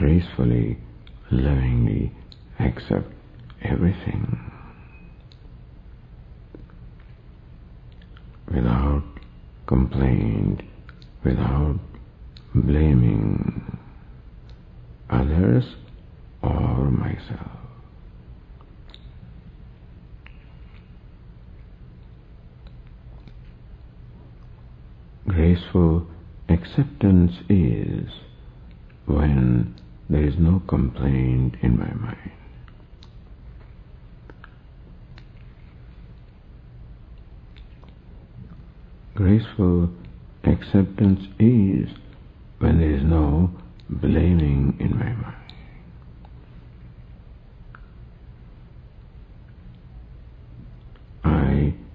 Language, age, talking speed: English, 60-79, 40 wpm